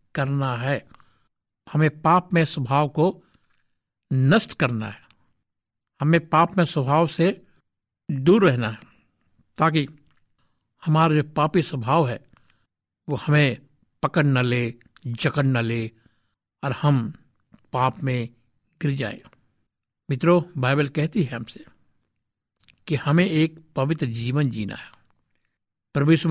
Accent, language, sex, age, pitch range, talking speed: native, Hindi, male, 60-79, 120-155 Hz, 115 wpm